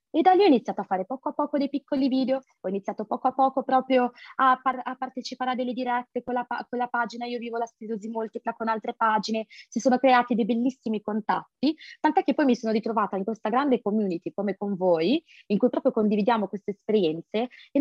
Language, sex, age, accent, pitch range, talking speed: Italian, female, 20-39, native, 205-275 Hz, 210 wpm